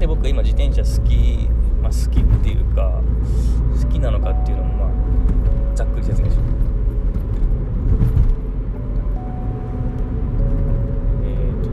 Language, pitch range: Japanese, 110-125 Hz